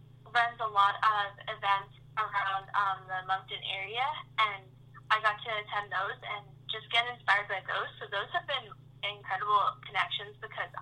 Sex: female